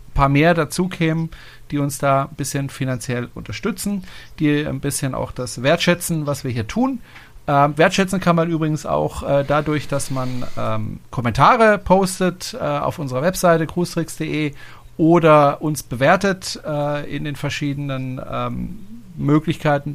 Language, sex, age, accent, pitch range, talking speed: German, male, 40-59, German, 135-170 Hz, 145 wpm